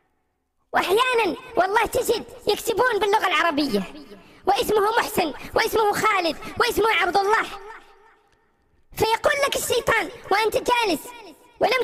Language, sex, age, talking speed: Arabic, male, 20-39, 95 wpm